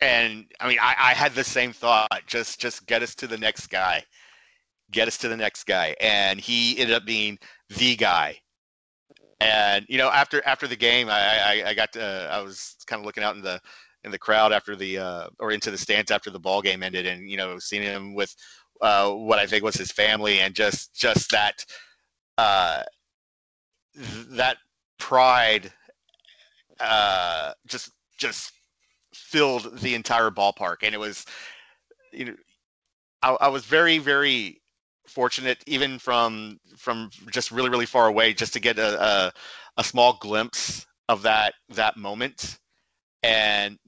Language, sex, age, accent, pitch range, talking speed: English, male, 30-49, American, 100-125 Hz, 170 wpm